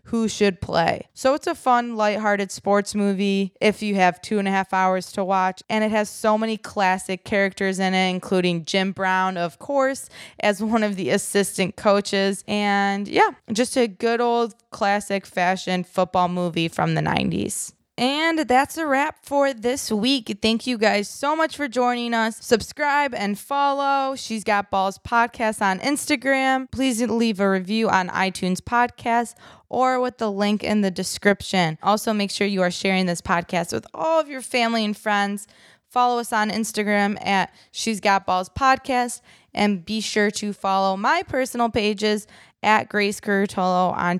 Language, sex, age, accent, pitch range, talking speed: English, female, 20-39, American, 190-240 Hz, 170 wpm